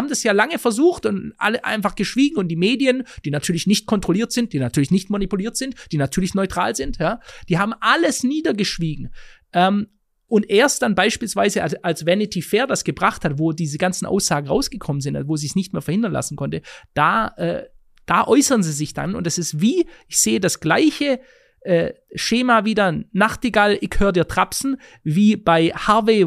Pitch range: 180-240 Hz